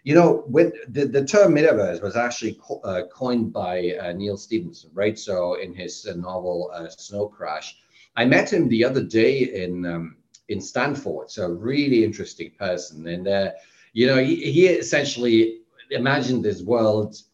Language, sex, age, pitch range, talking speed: English, male, 40-59, 105-150 Hz, 175 wpm